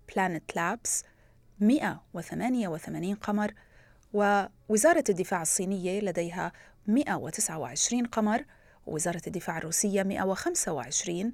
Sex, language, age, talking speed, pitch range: female, Arabic, 30-49, 75 wpm, 180-235 Hz